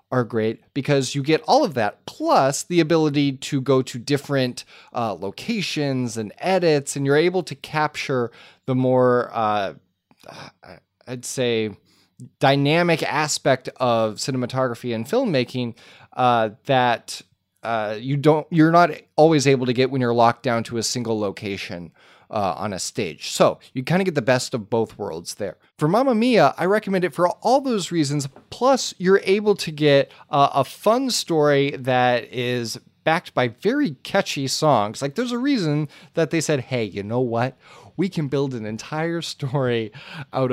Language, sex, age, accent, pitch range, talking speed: English, male, 20-39, American, 125-165 Hz, 165 wpm